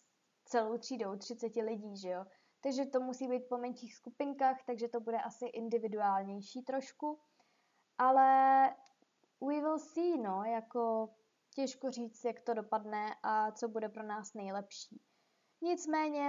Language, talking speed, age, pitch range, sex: Czech, 135 wpm, 20-39, 220-255 Hz, female